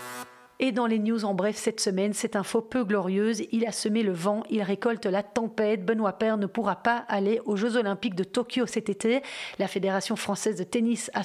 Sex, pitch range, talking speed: female, 195-225 Hz, 215 wpm